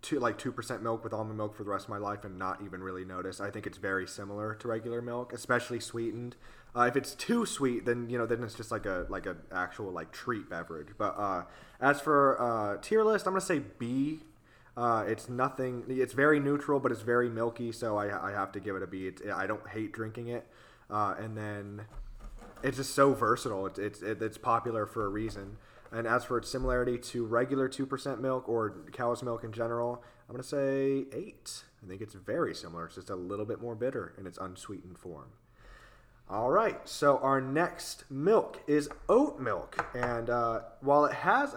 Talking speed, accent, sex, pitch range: 210 wpm, American, male, 110-135 Hz